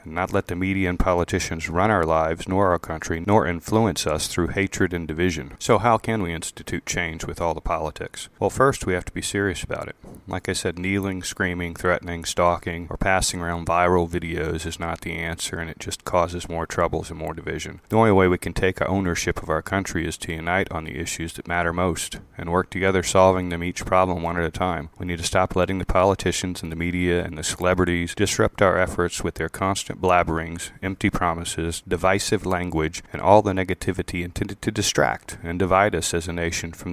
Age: 30-49